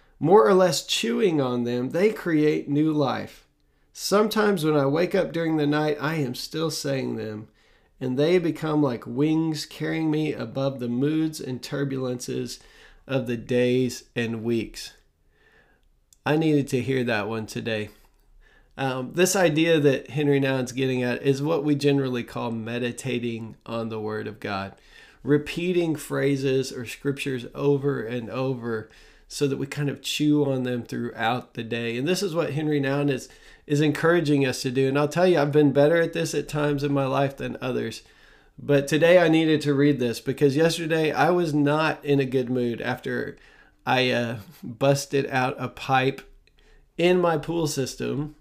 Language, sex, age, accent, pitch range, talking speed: English, male, 40-59, American, 130-155 Hz, 170 wpm